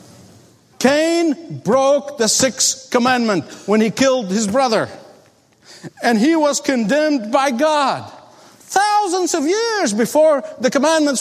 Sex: male